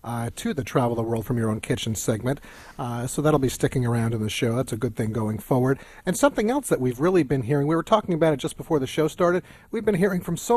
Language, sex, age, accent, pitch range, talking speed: English, male, 40-59, American, 130-180 Hz, 280 wpm